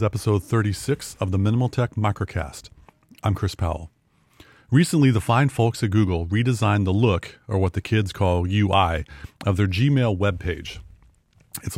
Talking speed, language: 155 wpm, English